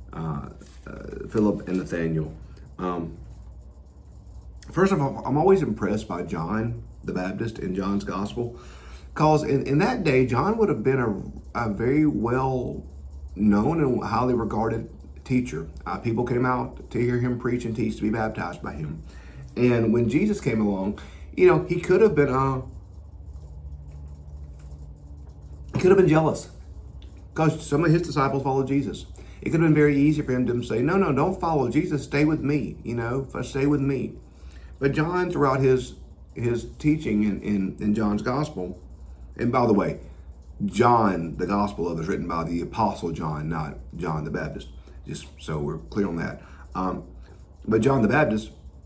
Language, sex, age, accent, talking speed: English, male, 40-59, American, 170 wpm